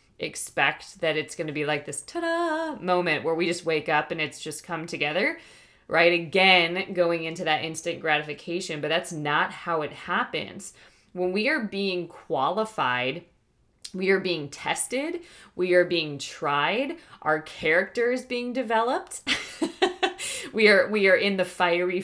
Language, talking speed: English, 160 wpm